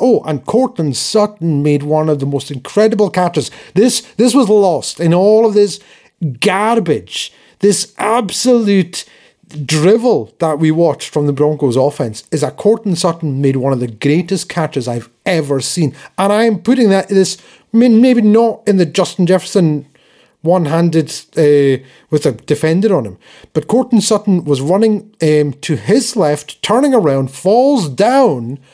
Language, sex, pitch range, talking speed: English, male, 150-215 Hz, 155 wpm